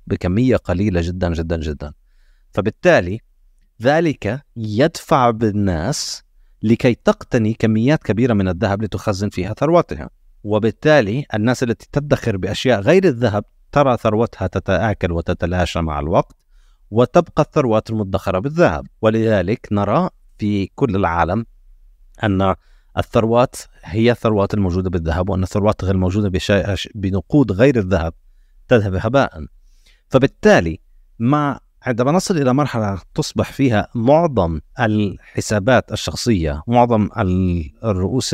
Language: Arabic